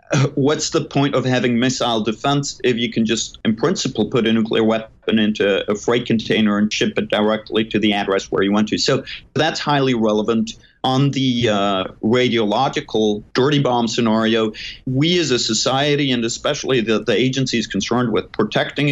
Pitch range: 110-130 Hz